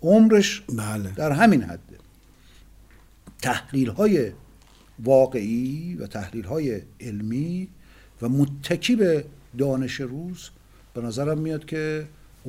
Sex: male